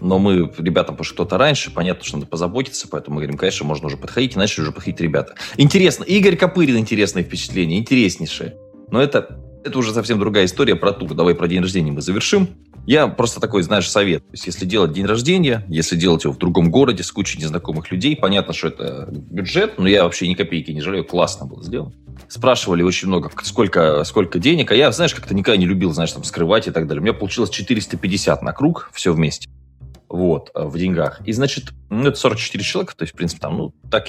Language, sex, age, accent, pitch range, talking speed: Russian, male, 20-39, native, 80-105 Hz, 210 wpm